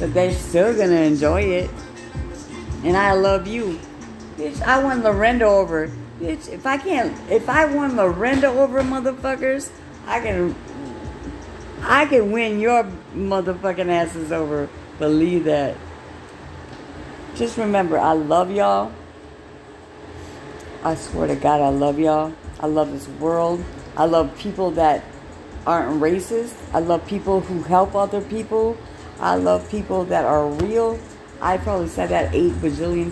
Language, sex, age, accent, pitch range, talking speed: English, female, 60-79, American, 145-195 Hz, 140 wpm